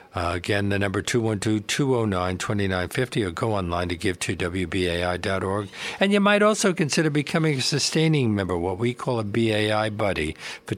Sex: male